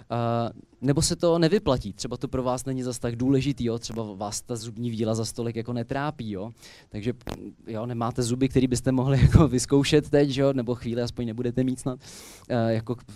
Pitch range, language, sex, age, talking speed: 115-150 Hz, Czech, male, 20-39, 190 wpm